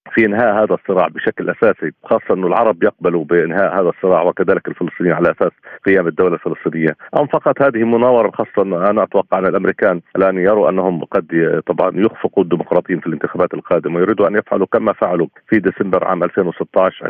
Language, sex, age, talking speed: Arabic, male, 40-59, 170 wpm